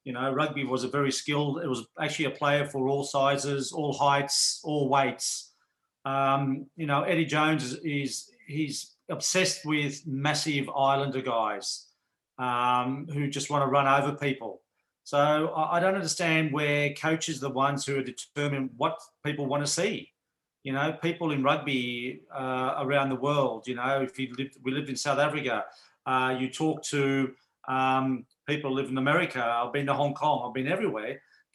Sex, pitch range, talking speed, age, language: male, 135-155 Hz, 180 wpm, 40-59, English